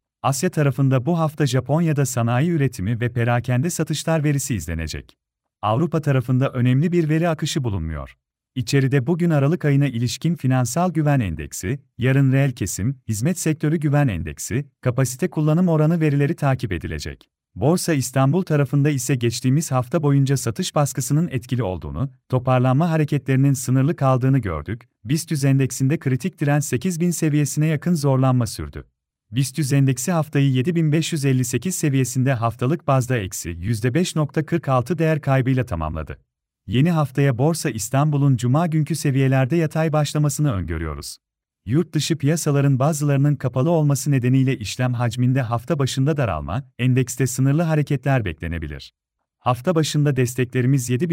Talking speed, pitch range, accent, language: 125 wpm, 125-155 Hz, native, Turkish